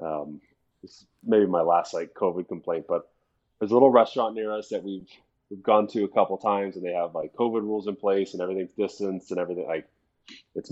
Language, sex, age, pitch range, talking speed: English, male, 20-39, 100-135 Hz, 220 wpm